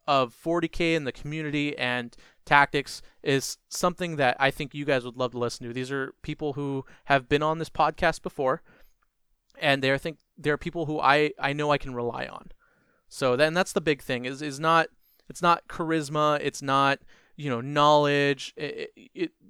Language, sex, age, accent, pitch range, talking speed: English, male, 30-49, American, 130-160 Hz, 190 wpm